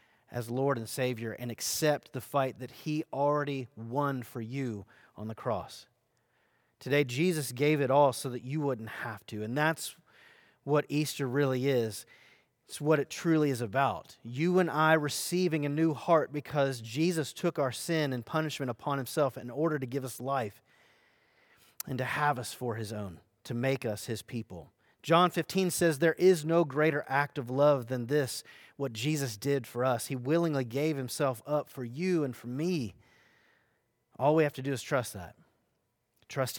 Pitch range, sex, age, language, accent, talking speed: 120-150 Hz, male, 30-49, English, American, 180 wpm